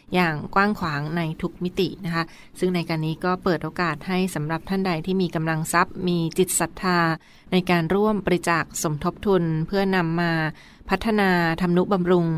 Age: 20-39